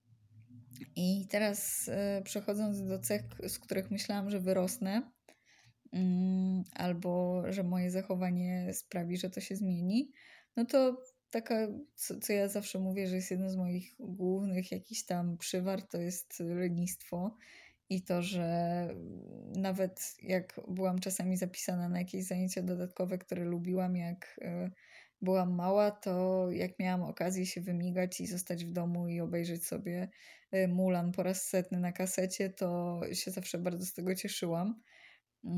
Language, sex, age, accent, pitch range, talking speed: Polish, female, 20-39, native, 180-195 Hz, 145 wpm